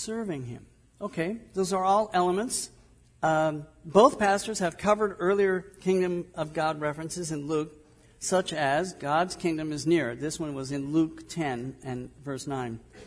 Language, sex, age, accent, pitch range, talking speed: English, male, 50-69, American, 140-185 Hz, 155 wpm